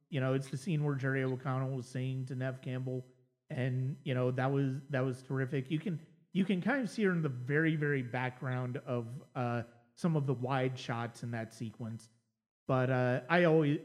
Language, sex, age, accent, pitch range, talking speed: English, male, 30-49, American, 130-170 Hz, 210 wpm